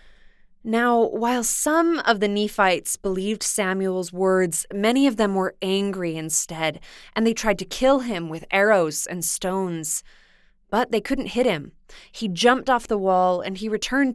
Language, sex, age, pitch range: English, female, 20-39, 185-240 Hz